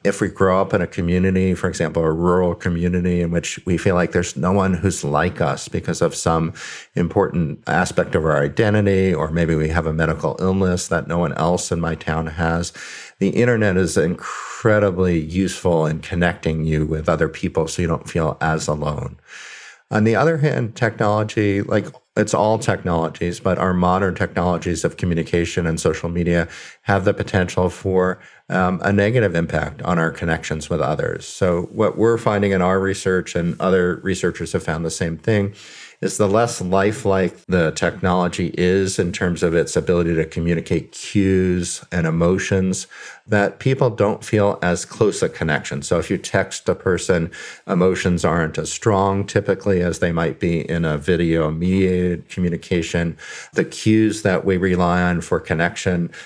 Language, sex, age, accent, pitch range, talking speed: English, male, 50-69, American, 85-95 Hz, 175 wpm